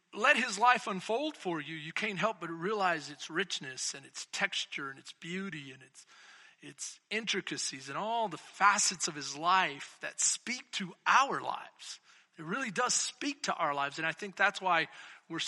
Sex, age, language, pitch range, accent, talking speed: male, 40-59, English, 185-275 Hz, American, 185 wpm